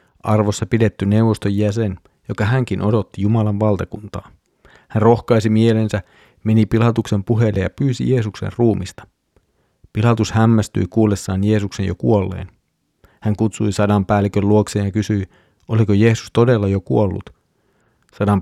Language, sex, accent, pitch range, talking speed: Finnish, male, native, 100-110 Hz, 125 wpm